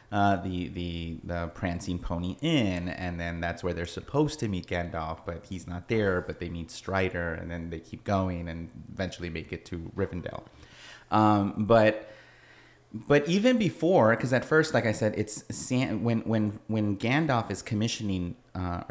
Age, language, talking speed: 30-49, English, 170 wpm